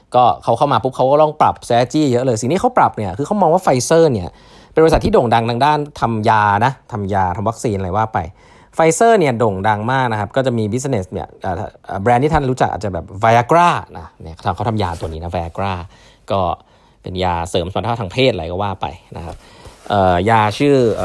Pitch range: 100-135 Hz